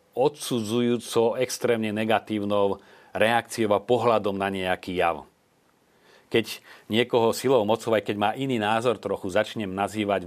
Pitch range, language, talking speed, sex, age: 95-105 Hz, Slovak, 115 wpm, male, 40-59